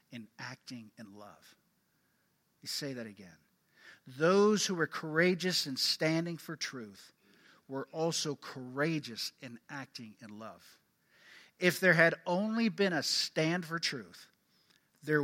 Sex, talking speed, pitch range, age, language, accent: male, 130 wpm, 135-185 Hz, 50-69, English, American